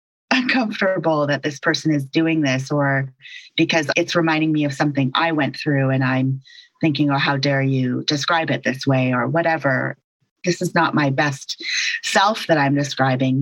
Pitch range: 140-165 Hz